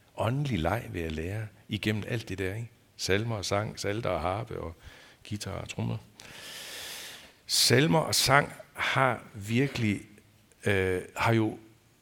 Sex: male